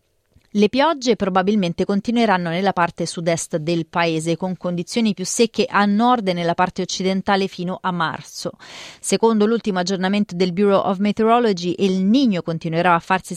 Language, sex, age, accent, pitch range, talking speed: Italian, female, 30-49, native, 180-225 Hz, 155 wpm